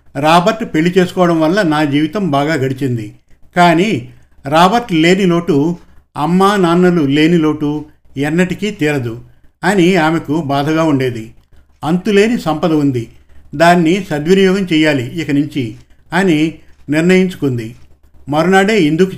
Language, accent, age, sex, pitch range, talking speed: Telugu, native, 50-69, male, 140-180 Hz, 105 wpm